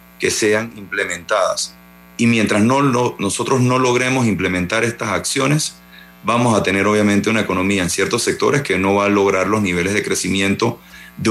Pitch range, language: 85-115 Hz, Spanish